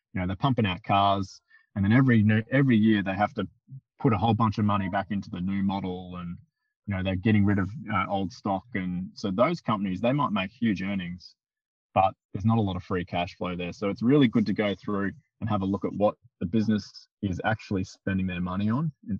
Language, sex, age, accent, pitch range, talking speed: English, male, 20-39, Australian, 95-115 Hz, 240 wpm